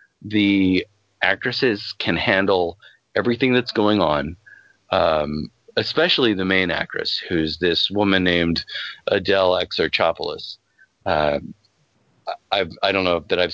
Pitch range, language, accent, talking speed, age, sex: 85-110 Hz, English, American, 105 wpm, 40-59, male